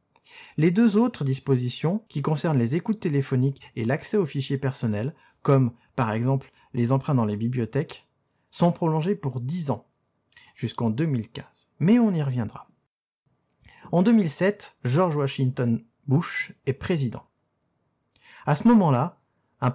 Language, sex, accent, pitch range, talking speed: French, male, French, 125-170 Hz, 135 wpm